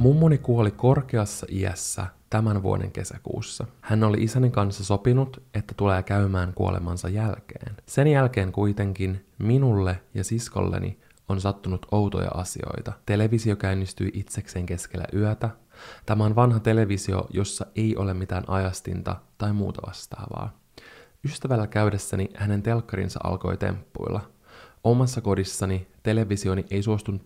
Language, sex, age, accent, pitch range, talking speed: Finnish, male, 20-39, native, 95-110 Hz, 120 wpm